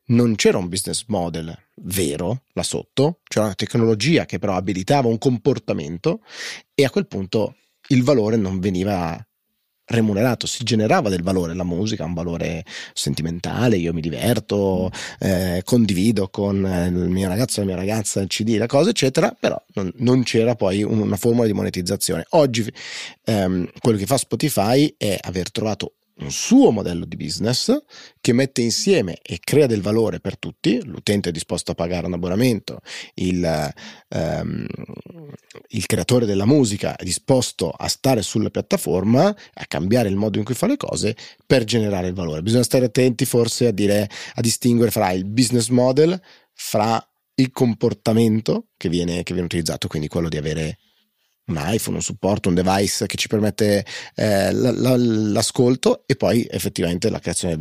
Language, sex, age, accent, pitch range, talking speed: Italian, male, 30-49, native, 90-120 Hz, 165 wpm